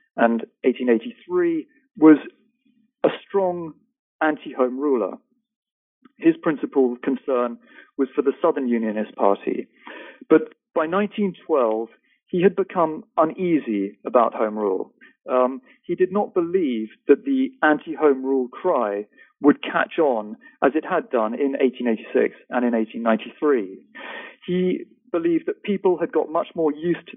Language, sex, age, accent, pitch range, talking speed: English, male, 40-59, British, 130-215 Hz, 130 wpm